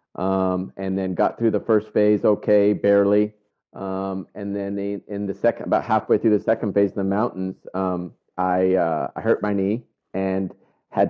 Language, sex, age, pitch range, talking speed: English, male, 30-49, 100-115 Hz, 190 wpm